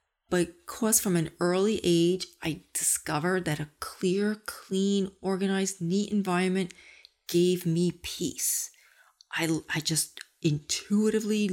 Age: 40-59